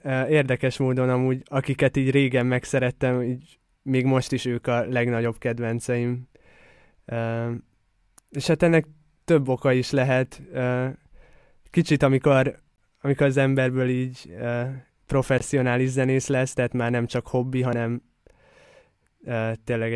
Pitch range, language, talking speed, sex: 120-135 Hz, Hungarian, 115 wpm, male